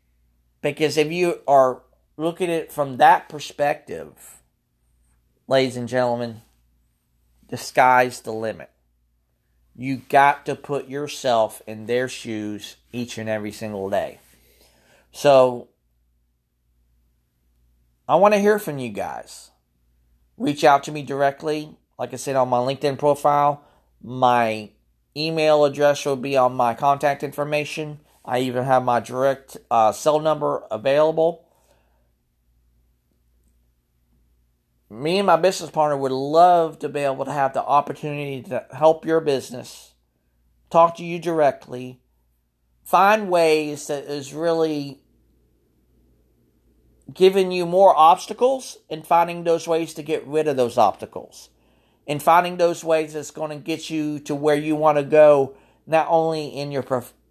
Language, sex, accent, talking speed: English, male, American, 135 wpm